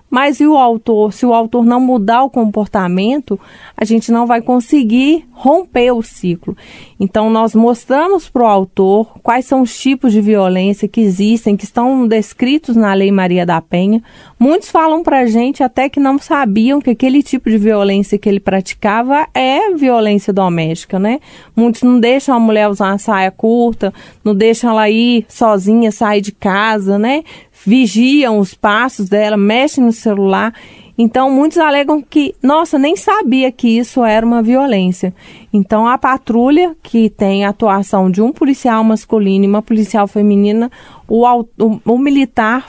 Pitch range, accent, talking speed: 205-255 Hz, Brazilian, 165 wpm